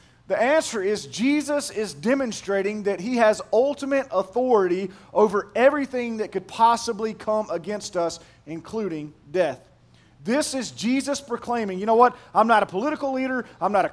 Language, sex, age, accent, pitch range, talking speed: English, male, 40-59, American, 165-240 Hz, 155 wpm